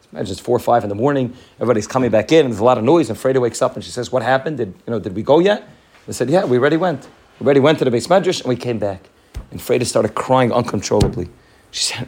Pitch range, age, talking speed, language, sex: 115-150 Hz, 30-49, 285 wpm, English, male